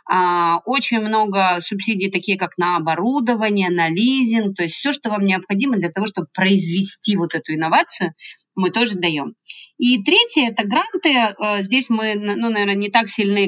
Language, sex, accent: Russian, female, native